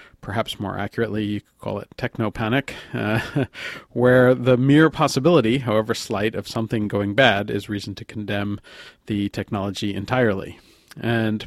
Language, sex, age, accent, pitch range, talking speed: English, male, 40-59, American, 100-120 Hz, 135 wpm